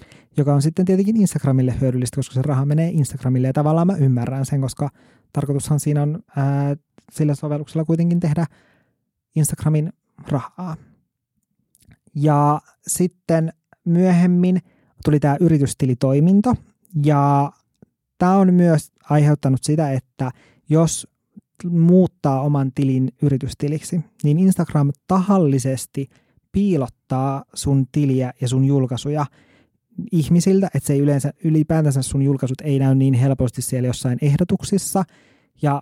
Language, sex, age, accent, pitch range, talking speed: Finnish, male, 20-39, native, 135-160 Hz, 115 wpm